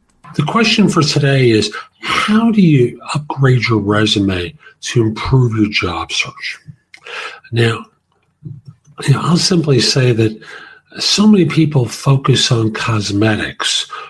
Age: 50-69